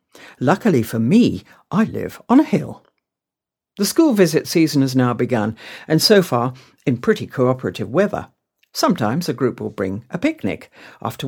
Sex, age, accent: female, 60-79, British